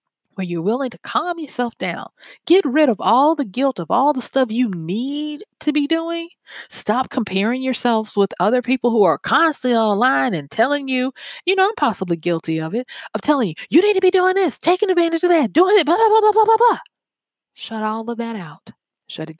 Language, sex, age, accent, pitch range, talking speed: English, female, 20-39, American, 190-290 Hz, 220 wpm